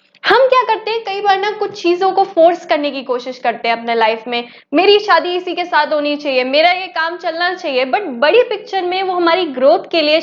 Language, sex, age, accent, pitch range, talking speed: Hindi, female, 10-29, native, 270-375 Hz, 235 wpm